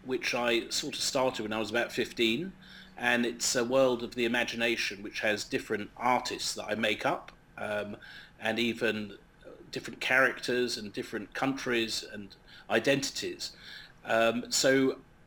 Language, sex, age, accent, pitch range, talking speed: English, male, 40-59, British, 110-130 Hz, 145 wpm